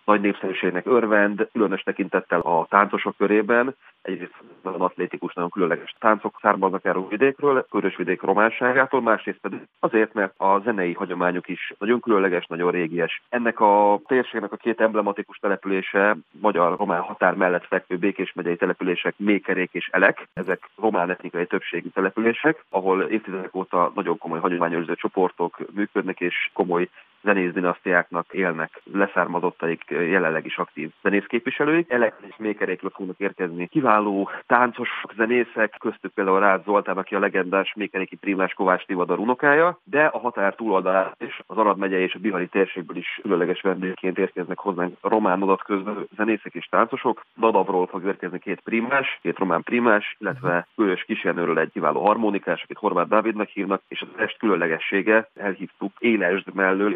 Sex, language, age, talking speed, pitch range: male, Hungarian, 30-49, 140 wpm, 90-110 Hz